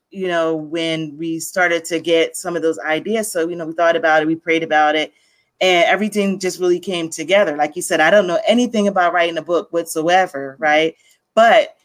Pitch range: 160-195 Hz